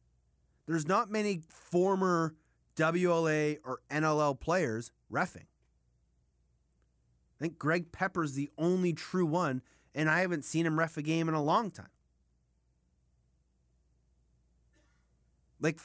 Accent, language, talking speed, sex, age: American, English, 115 wpm, male, 30-49